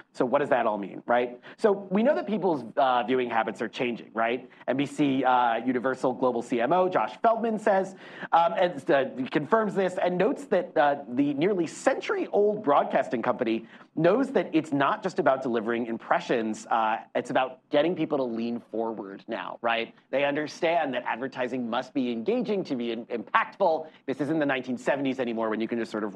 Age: 30-49